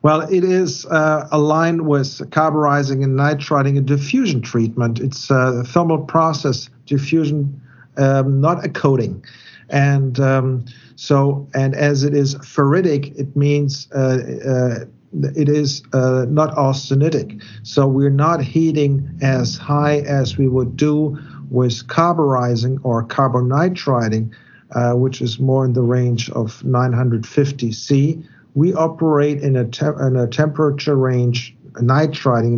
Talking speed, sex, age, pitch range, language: 135 wpm, male, 50-69, 120-145 Hz, English